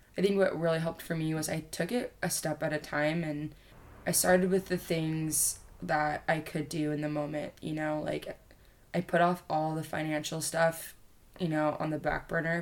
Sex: female